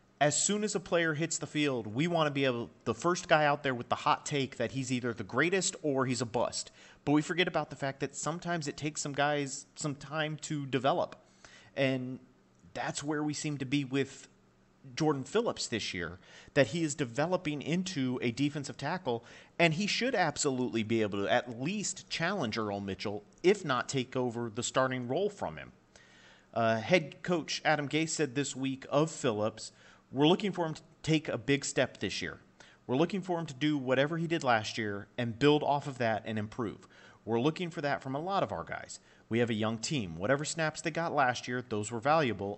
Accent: American